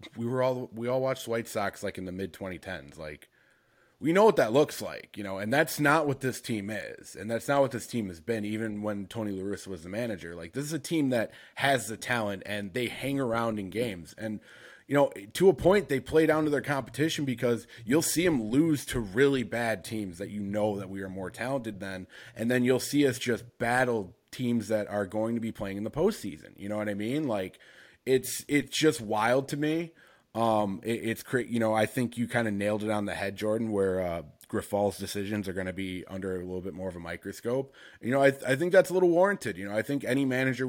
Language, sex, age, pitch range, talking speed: English, male, 30-49, 100-130 Hz, 245 wpm